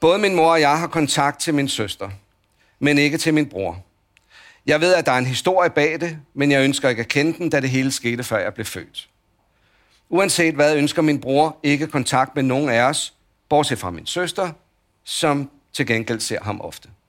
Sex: male